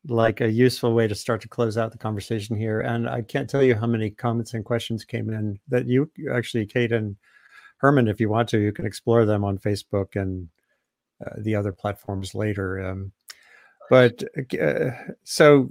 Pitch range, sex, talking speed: 105-125 Hz, male, 190 wpm